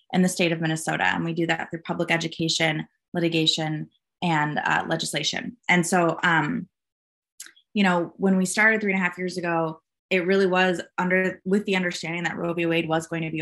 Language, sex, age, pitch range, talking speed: English, female, 20-39, 160-185 Hz, 200 wpm